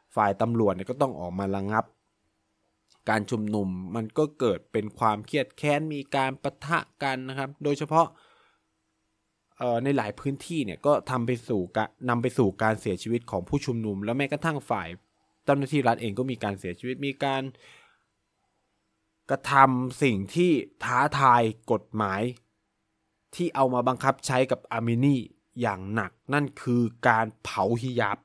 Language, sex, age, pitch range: Thai, male, 20-39, 105-135 Hz